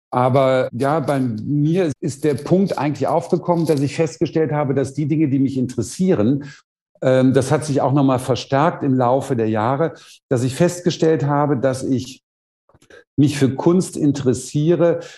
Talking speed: 160 wpm